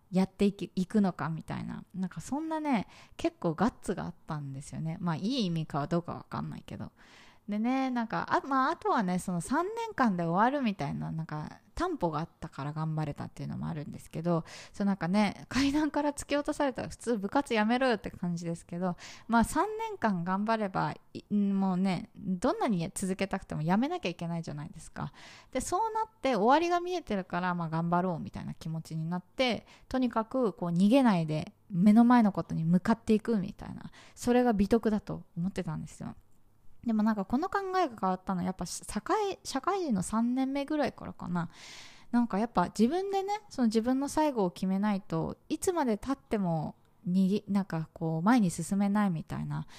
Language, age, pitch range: Japanese, 20-39, 170-250 Hz